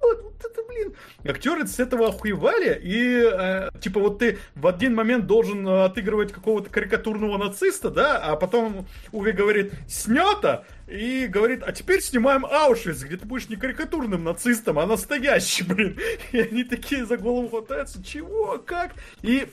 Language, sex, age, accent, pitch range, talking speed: Russian, male, 30-49, native, 205-285 Hz, 155 wpm